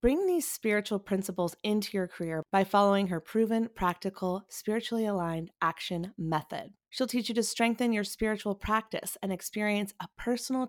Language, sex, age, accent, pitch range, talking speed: English, female, 30-49, American, 170-215 Hz, 155 wpm